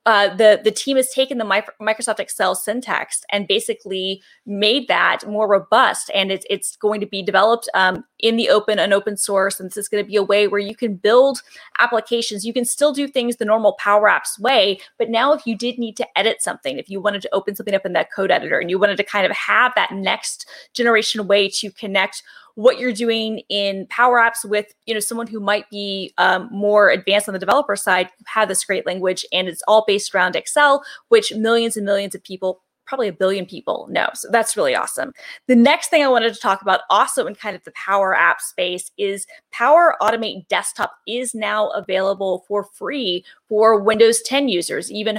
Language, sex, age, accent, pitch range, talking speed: English, female, 20-39, American, 195-235 Hz, 215 wpm